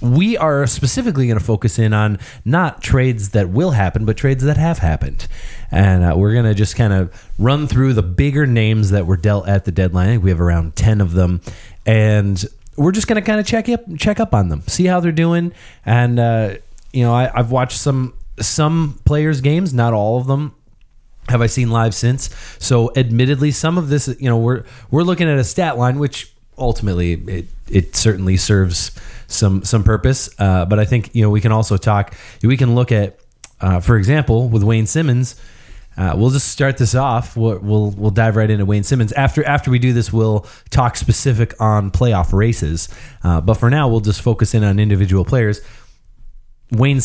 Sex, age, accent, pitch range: male, 30-49, American, 105-135 Hz